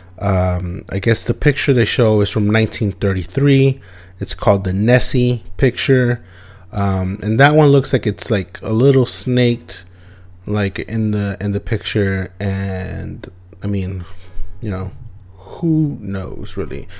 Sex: male